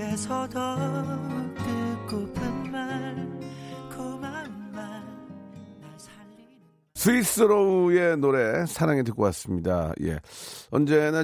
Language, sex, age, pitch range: Korean, male, 40-59, 95-140 Hz